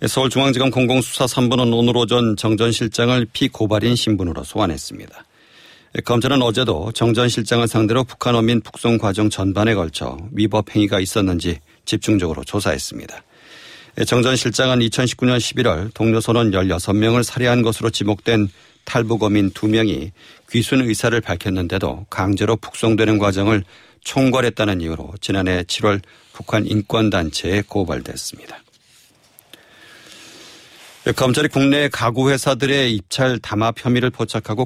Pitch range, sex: 100-120 Hz, male